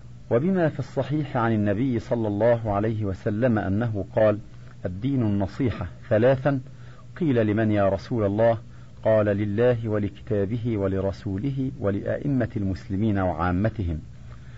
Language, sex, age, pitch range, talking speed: Arabic, male, 50-69, 100-125 Hz, 105 wpm